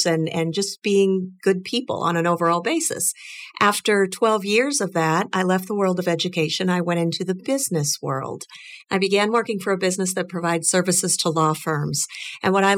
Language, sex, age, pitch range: English, female, 50-69, 175-215 Hz